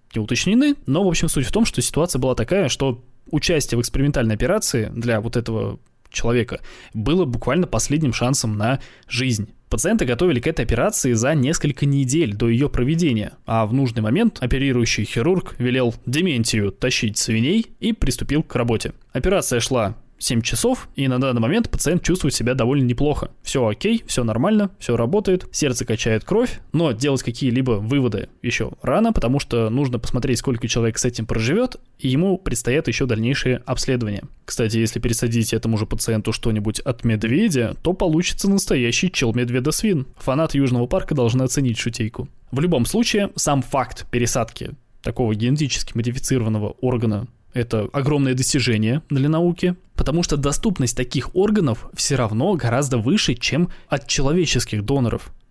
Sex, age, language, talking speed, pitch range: male, 20-39, Russian, 155 wpm, 115-150 Hz